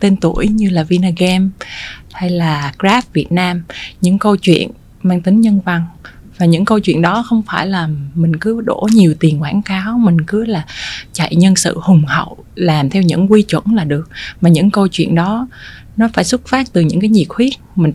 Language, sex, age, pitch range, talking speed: Vietnamese, female, 20-39, 165-210 Hz, 205 wpm